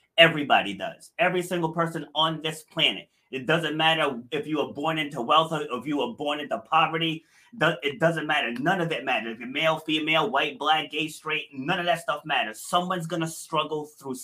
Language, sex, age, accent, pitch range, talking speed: English, male, 30-49, American, 145-175 Hz, 205 wpm